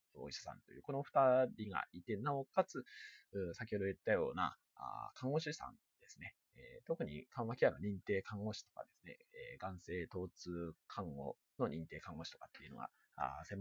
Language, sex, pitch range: Japanese, male, 95-140 Hz